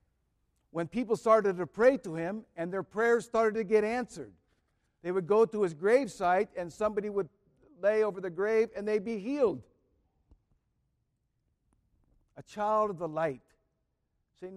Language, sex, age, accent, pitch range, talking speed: English, male, 60-79, American, 145-200 Hz, 155 wpm